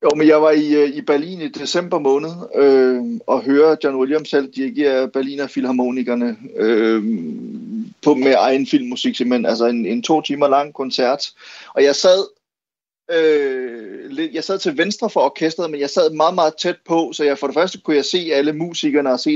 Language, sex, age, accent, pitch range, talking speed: Danish, male, 30-49, native, 140-180 Hz, 180 wpm